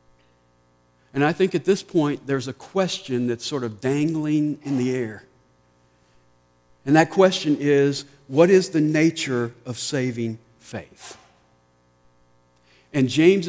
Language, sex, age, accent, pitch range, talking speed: English, male, 50-69, American, 100-155 Hz, 130 wpm